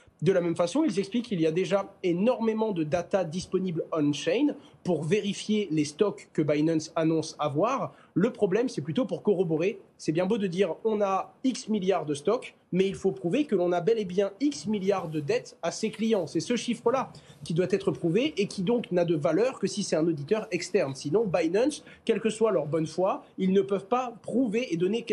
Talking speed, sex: 215 wpm, male